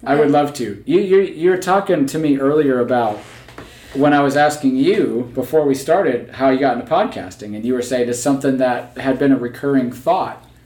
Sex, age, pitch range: male, 40-59, 125-155 Hz